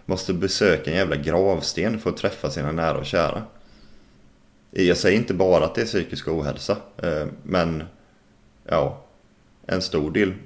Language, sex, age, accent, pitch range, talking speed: Swedish, male, 30-49, native, 80-100 Hz, 150 wpm